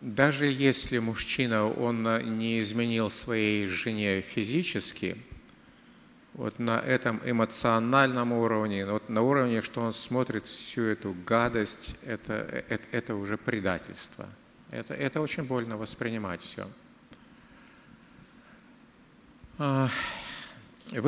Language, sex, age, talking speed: Ukrainian, male, 50-69, 95 wpm